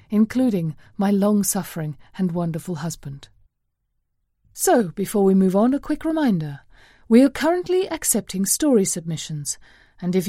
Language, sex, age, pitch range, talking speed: English, female, 30-49, 180-255 Hz, 130 wpm